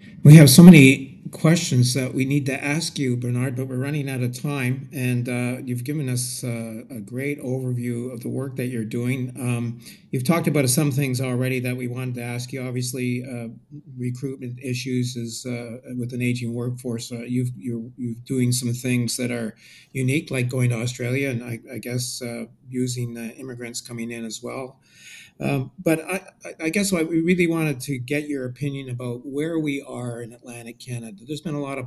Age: 50-69